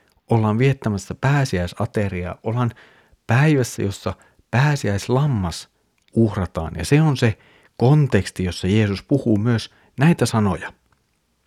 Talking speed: 100 wpm